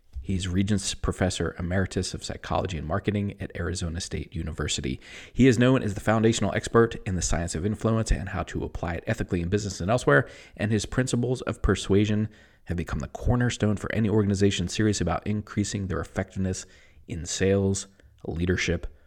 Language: English